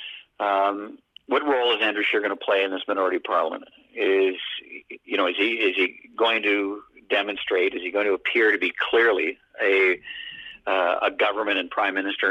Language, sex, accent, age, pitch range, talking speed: English, male, American, 50-69, 310-445 Hz, 185 wpm